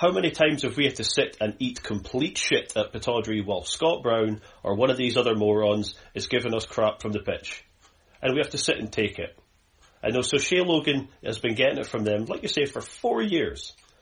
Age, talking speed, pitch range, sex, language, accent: 30-49, 235 wpm, 105-130 Hz, male, English, British